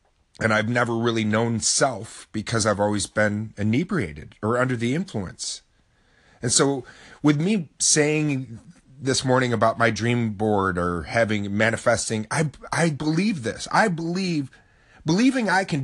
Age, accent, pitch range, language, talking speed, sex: 30-49, American, 110-150 Hz, English, 145 wpm, male